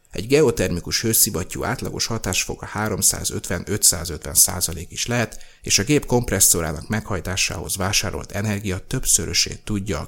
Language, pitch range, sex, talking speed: Hungarian, 90-115 Hz, male, 105 wpm